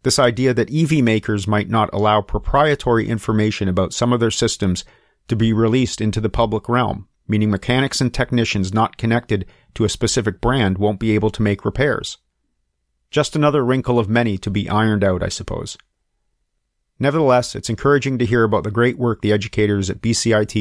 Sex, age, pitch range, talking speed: male, 40-59, 105-125 Hz, 180 wpm